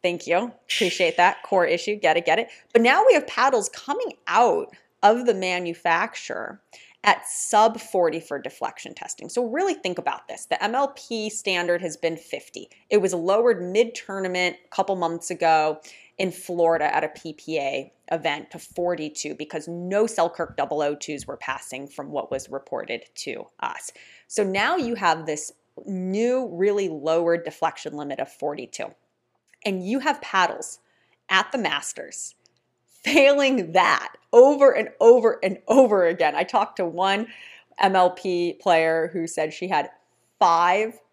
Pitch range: 165-225 Hz